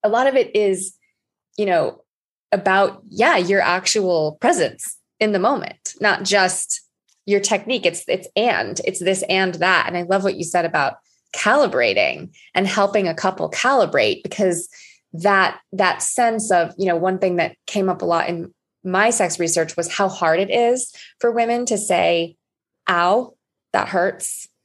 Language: English